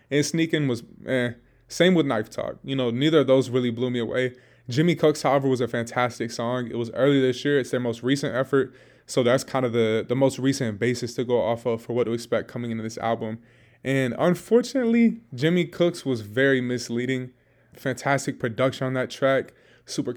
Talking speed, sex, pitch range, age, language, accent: 200 wpm, male, 120-140 Hz, 20-39, English, American